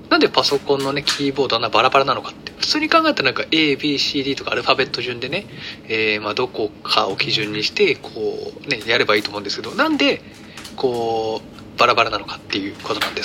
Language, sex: Japanese, male